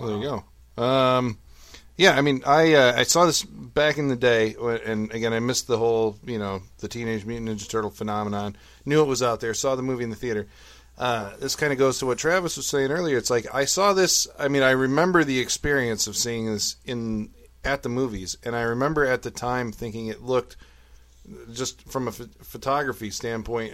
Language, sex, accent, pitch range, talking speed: English, male, American, 105-135 Hz, 215 wpm